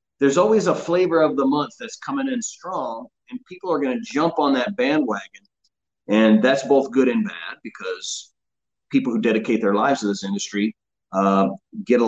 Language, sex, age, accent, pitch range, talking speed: English, male, 30-49, American, 125-210 Hz, 185 wpm